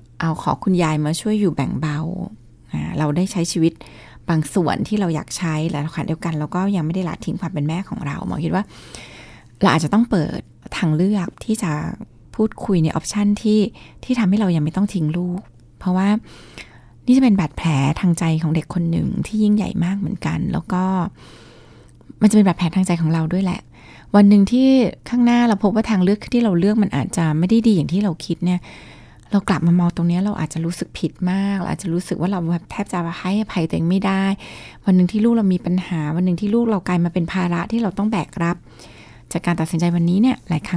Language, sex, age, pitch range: Thai, female, 20-39, 160-200 Hz